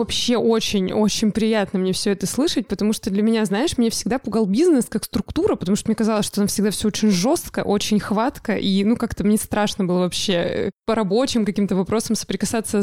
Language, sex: Russian, female